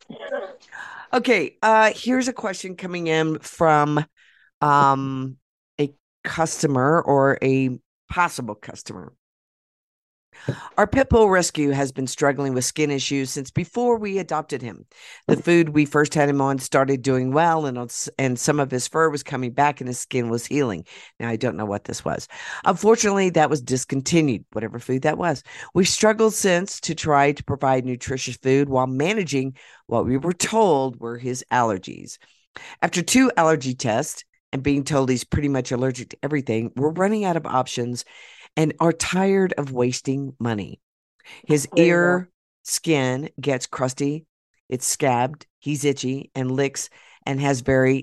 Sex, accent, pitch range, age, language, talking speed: female, American, 130-170 Hz, 50-69, English, 155 wpm